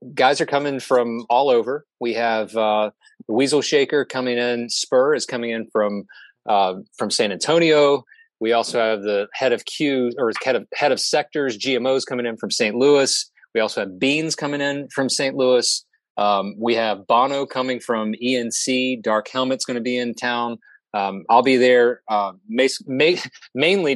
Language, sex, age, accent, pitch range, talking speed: English, male, 30-49, American, 115-145 Hz, 180 wpm